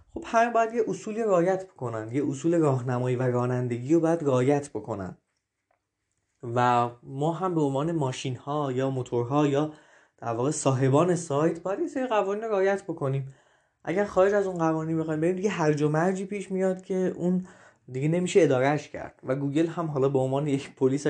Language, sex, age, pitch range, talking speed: Persian, male, 20-39, 130-175 Hz, 170 wpm